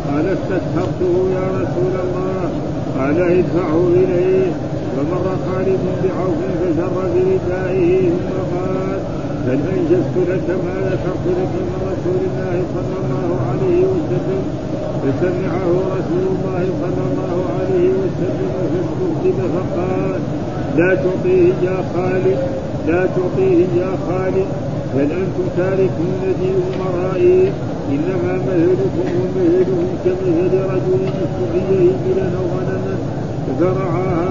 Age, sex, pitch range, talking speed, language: 50-69, male, 150-185 Hz, 105 wpm, Arabic